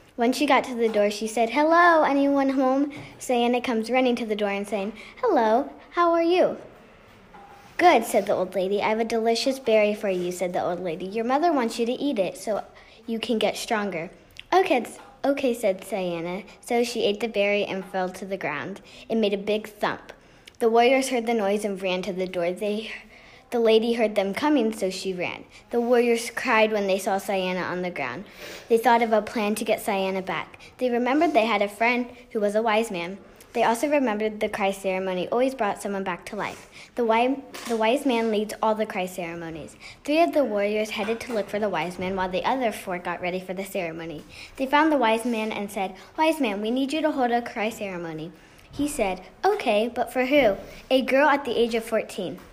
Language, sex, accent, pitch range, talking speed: English, female, American, 195-245 Hz, 215 wpm